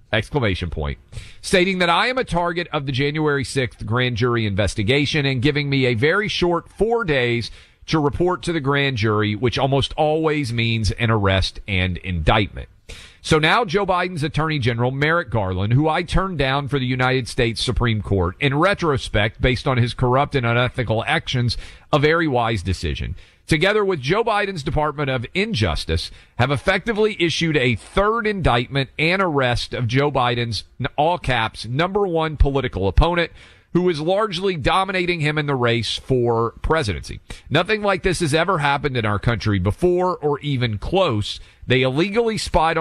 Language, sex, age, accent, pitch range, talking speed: English, male, 40-59, American, 110-165 Hz, 165 wpm